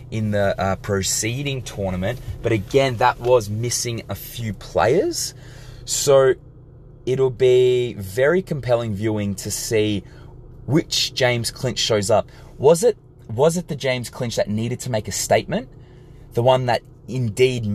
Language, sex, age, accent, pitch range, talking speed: English, male, 20-39, Australian, 110-130 Hz, 145 wpm